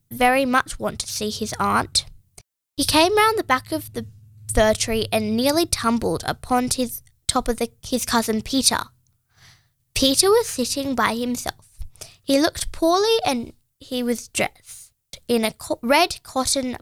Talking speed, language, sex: 155 wpm, English, female